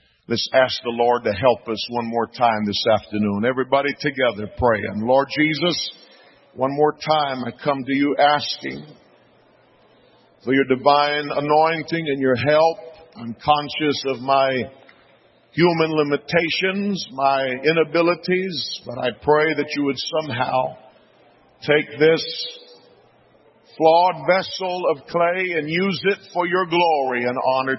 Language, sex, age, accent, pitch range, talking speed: English, male, 50-69, American, 130-175 Hz, 130 wpm